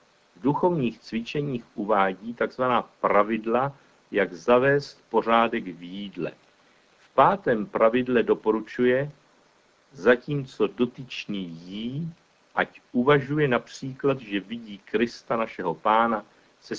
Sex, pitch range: male, 110-140 Hz